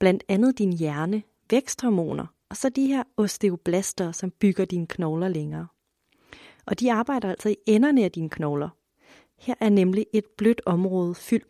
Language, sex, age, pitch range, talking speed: Danish, female, 30-49, 180-230 Hz, 160 wpm